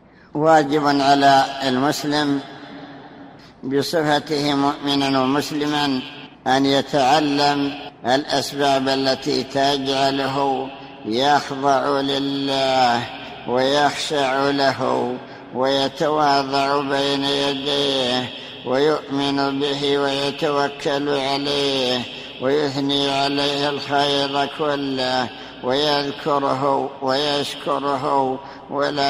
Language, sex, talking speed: Arabic, male, 60 wpm